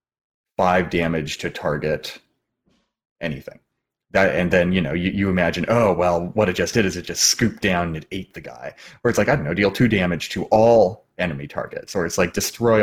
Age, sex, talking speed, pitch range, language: 30-49, male, 215 wpm, 90-110 Hz, English